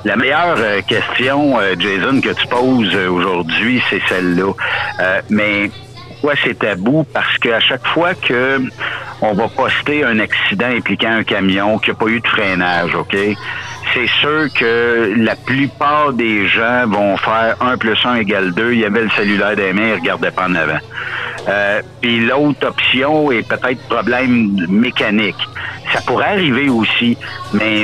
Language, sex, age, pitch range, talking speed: French, male, 60-79, 110-135 Hz, 160 wpm